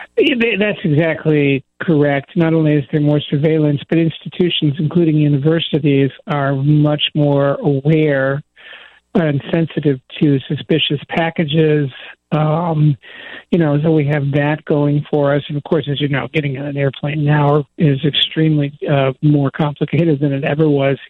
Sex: male